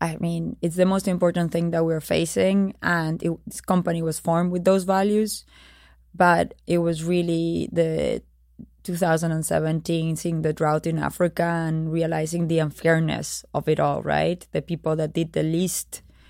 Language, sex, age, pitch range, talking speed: English, female, 20-39, 155-185 Hz, 160 wpm